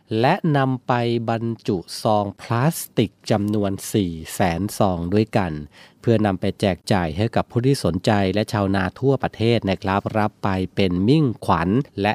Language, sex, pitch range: Thai, male, 100-130 Hz